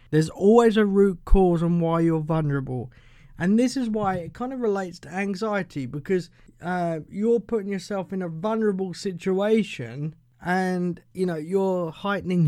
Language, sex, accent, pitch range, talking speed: English, male, British, 140-195 Hz, 160 wpm